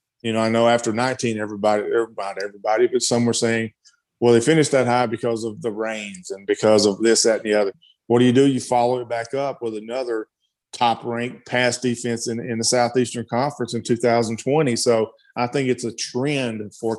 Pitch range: 115-125 Hz